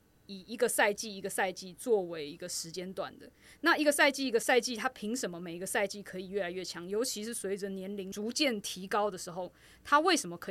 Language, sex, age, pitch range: Chinese, female, 20-39, 185-230 Hz